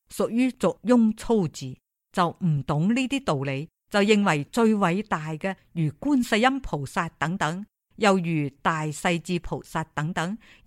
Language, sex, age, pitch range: Chinese, female, 50-69, 150-210 Hz